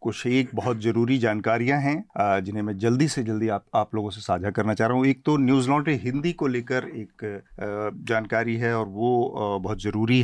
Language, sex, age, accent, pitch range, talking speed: Hindi, male, 40-59, native, 110-135 Hz, 200 wpm